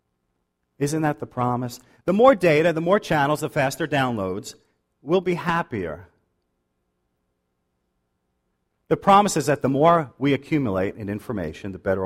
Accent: American